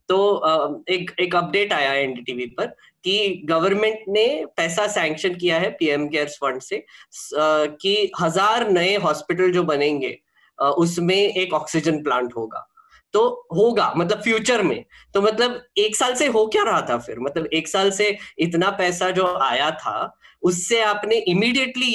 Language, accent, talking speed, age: Hindi, native, 150 wpm, 20-39